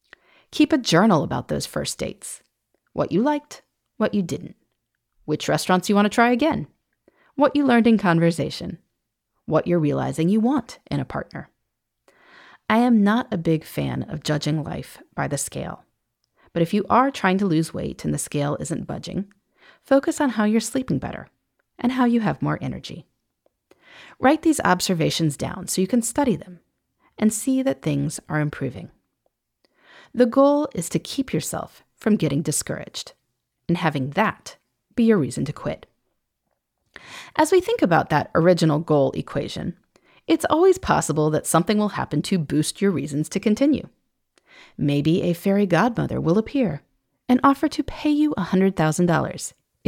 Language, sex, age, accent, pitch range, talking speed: English, female, 30-49, American, 155-245 Hz, 160 wpm